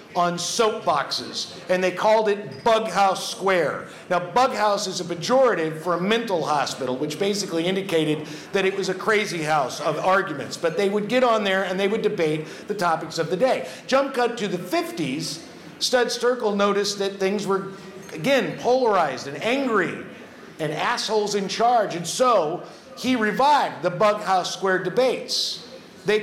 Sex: male